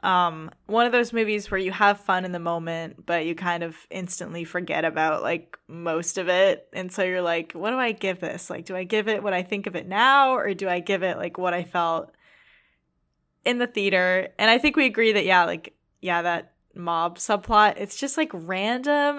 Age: 10-29